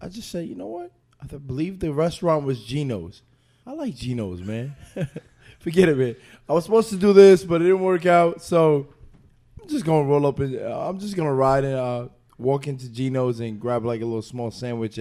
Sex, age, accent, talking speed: male, 20-39, American, 215 wpm